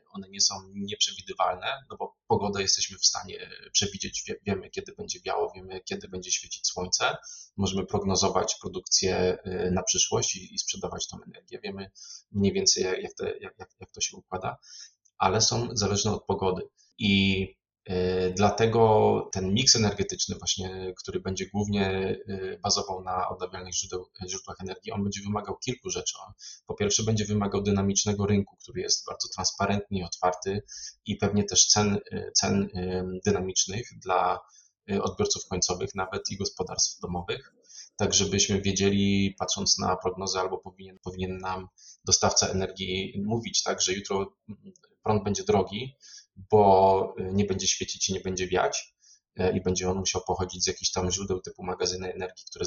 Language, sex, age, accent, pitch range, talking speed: Polish, male, 20-39, native, 95-100 Hz, 150 wpm